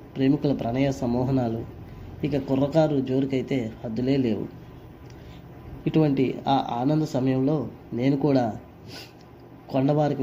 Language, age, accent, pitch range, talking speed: Telugu, 20-39, native, 120-145 Hz, 80 wpm